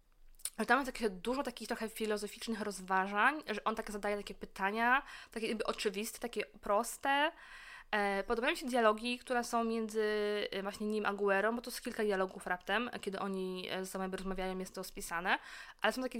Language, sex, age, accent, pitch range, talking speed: Polish, female, 20-39, native, 205-235 Hz, 180 wpm